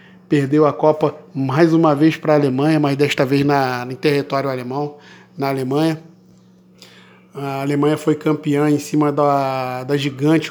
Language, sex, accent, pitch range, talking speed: Portuguese, male, Brazilian, 140-160 Hz, 150 wpm